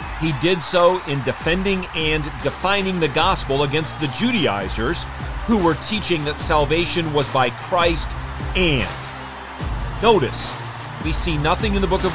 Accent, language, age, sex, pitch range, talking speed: American, English, 40-59, male, 120-160 Hz, 145 wpm